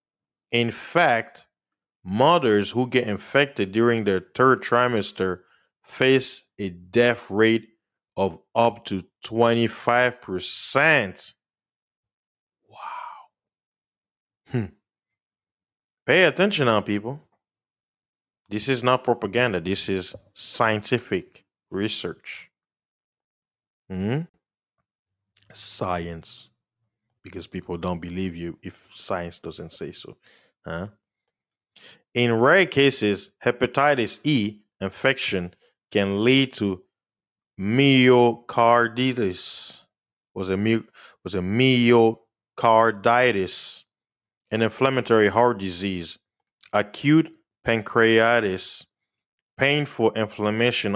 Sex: male